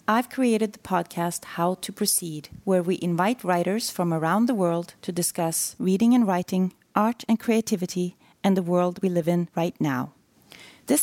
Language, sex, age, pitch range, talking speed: English, female, 30-49, 170-210 Hz, 175 wpm